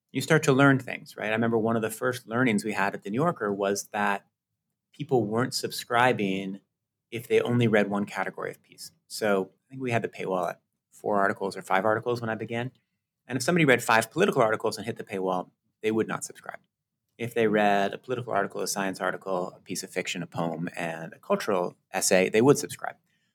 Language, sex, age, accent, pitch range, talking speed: English, male, 30-49, American, 100-130 Hz, 220 wpm